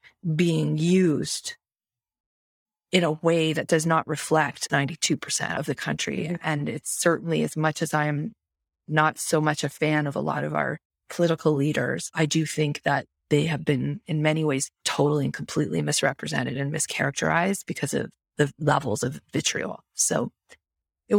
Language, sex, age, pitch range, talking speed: English, female, 30-49, 150-180 Hz, 160 wpm